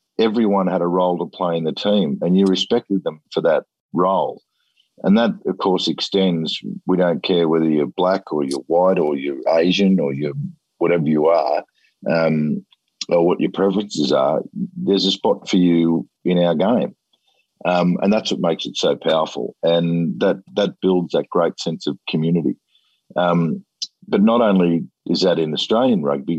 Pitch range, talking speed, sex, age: 85-95 Hz, 175 wpm, male, 50-69